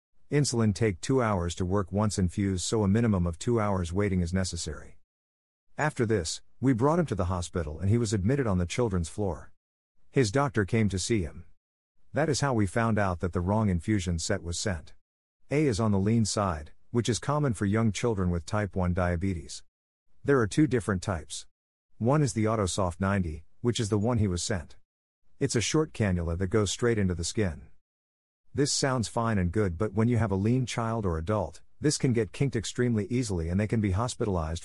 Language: English